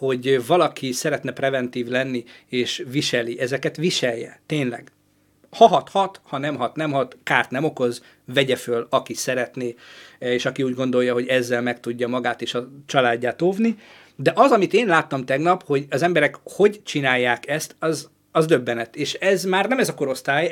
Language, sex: Hungarian, male